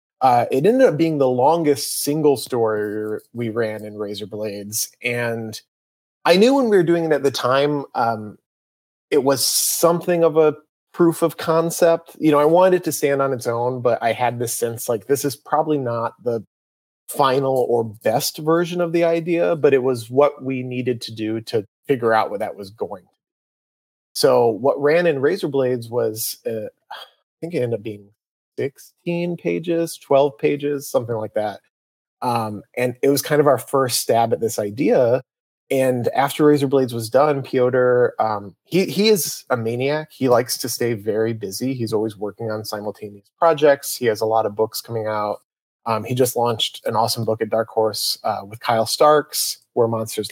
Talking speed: 185 wpm